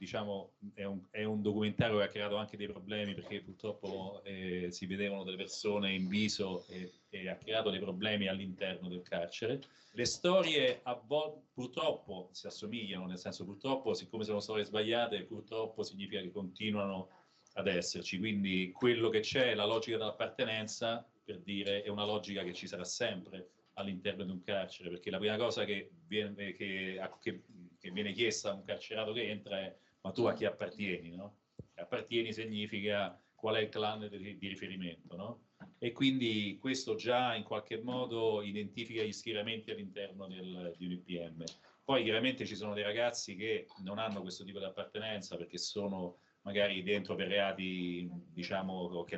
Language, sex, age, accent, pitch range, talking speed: Italian, male, 40-59, native, 90-105 Hz, 170 wpm